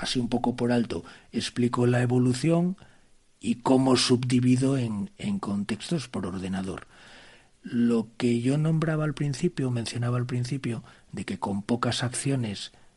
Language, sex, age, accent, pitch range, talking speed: Spanish, male, 40-59, Spanish, 115-140 Hz, 140 wpm